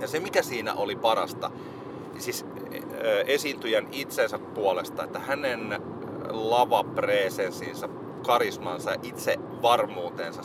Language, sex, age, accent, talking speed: Finnish, male, 30-49, native, 85 wpm